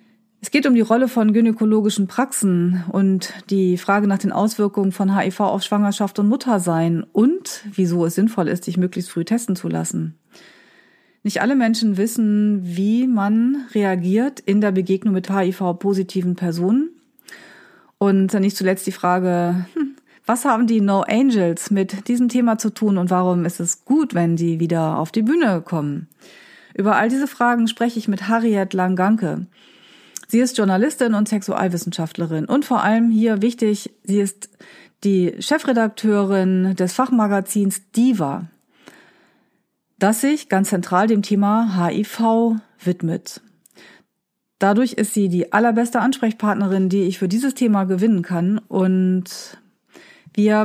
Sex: female